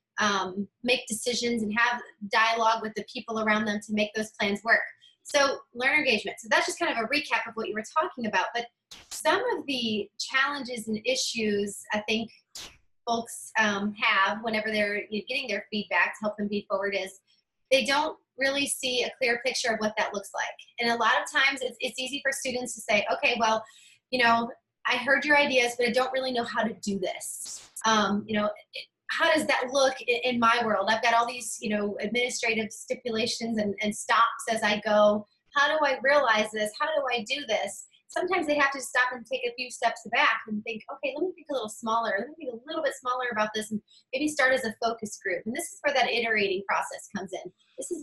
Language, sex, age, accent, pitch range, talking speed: English, female, 20-39, American, 215-260 Hz, 225 wpm